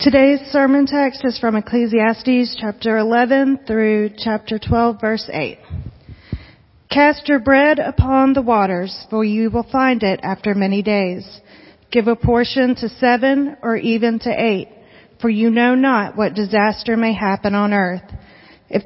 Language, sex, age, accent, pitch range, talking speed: English, female, 40-59, American, 205-245 Hz, 150 wpm